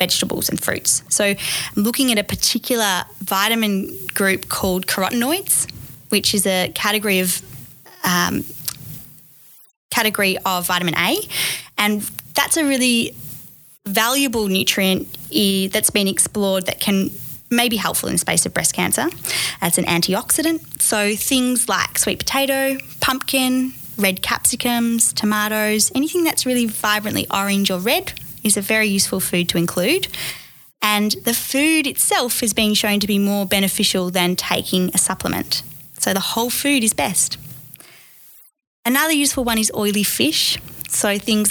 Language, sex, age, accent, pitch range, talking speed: English, female, 10-29, Australian, 185-230 Hz, 140 wpm